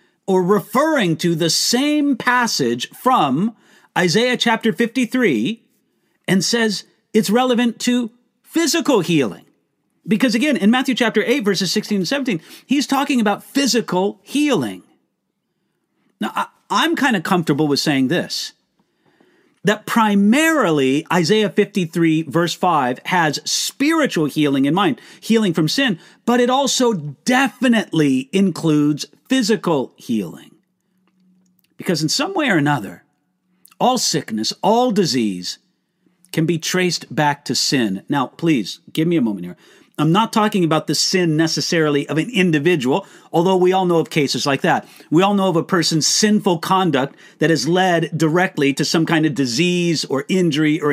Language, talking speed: English, 145 wpm